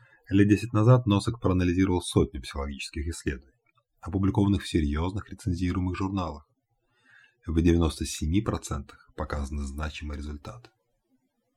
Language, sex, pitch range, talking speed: Russian, male, 80-120 Hz, 95 wpm